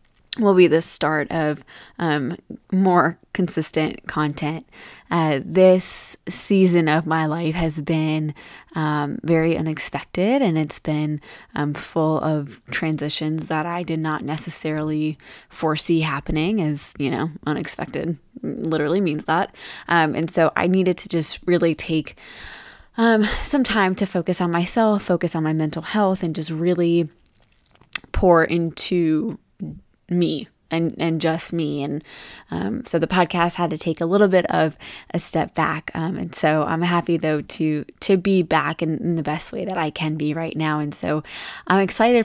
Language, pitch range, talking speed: English, 155-175 Hz, 160 wpm